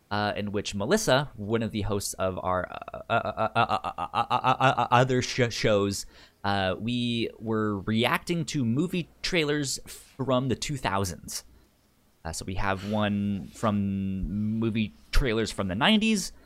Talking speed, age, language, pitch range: 150 wpm, 20-39, English, 95-145 Hz